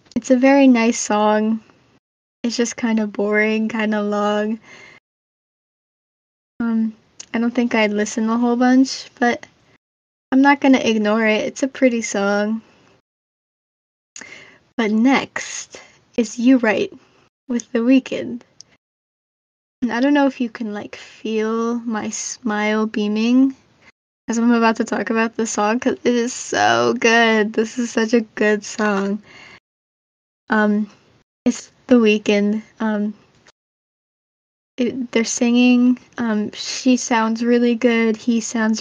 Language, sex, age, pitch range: English, female, 10-29, 215-240 Hz